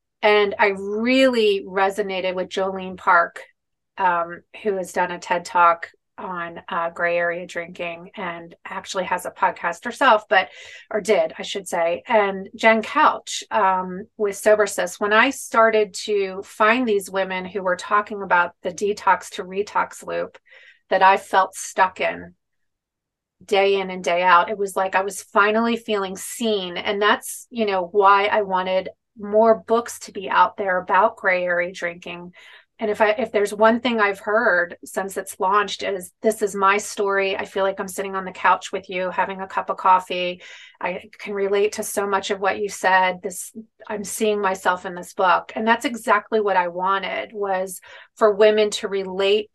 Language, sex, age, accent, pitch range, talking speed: English, female, 30-49, American, 185-215 Hz, 180 wpm